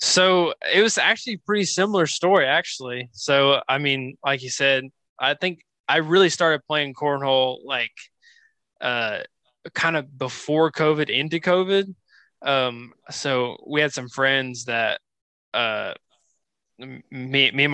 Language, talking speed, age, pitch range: English, 140 wpm, 20-39, 125-155 Hz